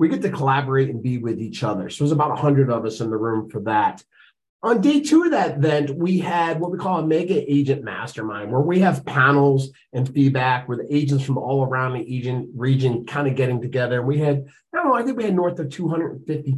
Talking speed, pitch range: 235 wpm, 120-170 Hz